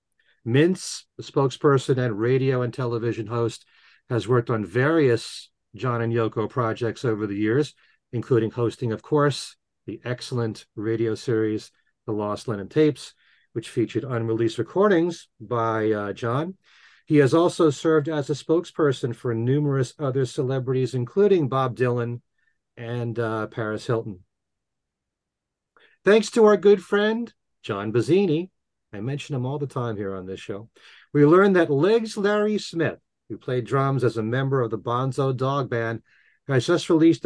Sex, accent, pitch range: male, American, 115-155 Hz